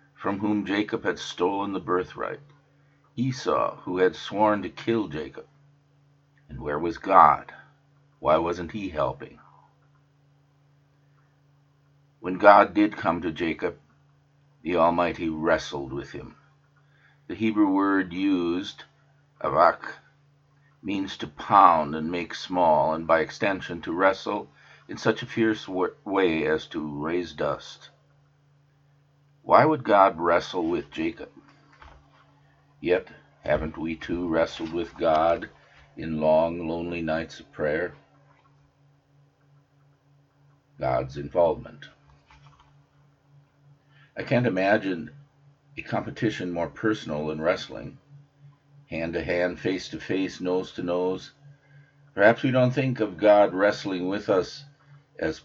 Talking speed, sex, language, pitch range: 110 wpm, male, English, 95-145 Hz